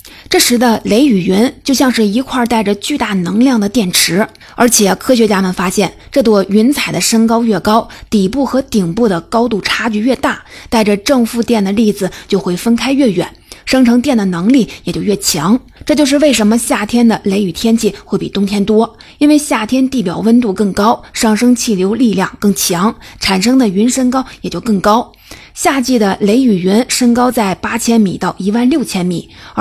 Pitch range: 200-245 Hz